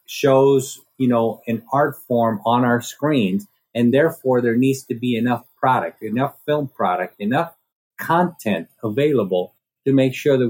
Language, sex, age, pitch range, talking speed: English, male, 50-69, 115-150 Hz, 155 wpm